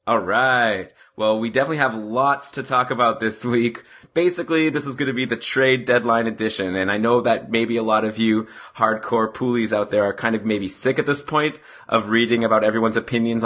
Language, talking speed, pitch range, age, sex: English, 215 wpm, 115-135 Hz, 20-39, male